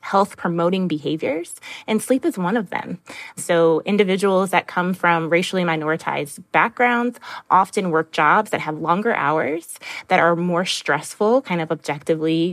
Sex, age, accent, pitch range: female, 20-39, American, 160-190 Hz